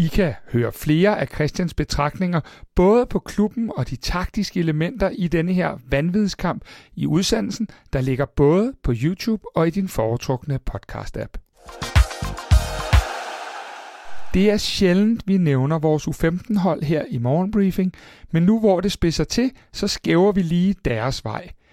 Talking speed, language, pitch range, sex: 145 wpm, Danish, 145-200 Hz, male